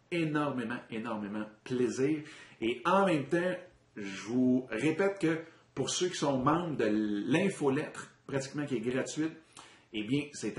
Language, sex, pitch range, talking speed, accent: French, male, 115-155 Hz, 140 wpm, Canadian